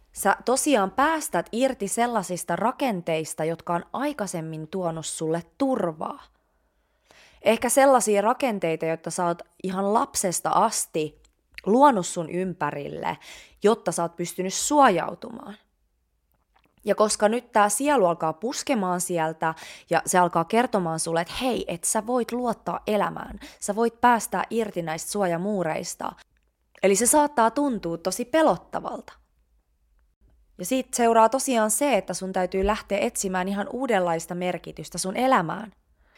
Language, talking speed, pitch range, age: Finnish, 125 wpm, 165-235 Hz, 20-39